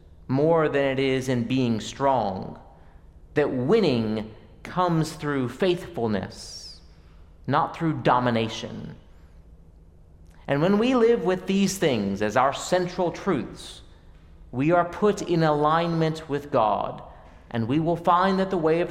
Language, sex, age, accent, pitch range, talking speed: English, male, 40-59, American, 100-165 Hz, 130 wpm